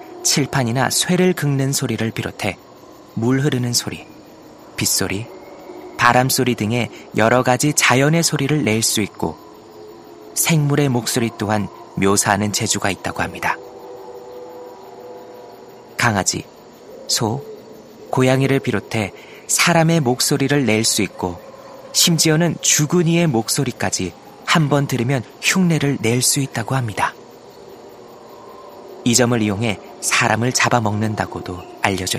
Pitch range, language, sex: 110-145 Hz, Korean, male